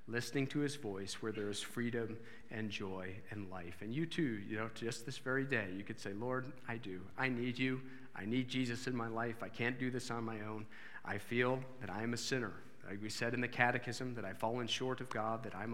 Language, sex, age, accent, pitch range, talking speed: English, male, 40-59, American, 105-130 Hz, 245 wpm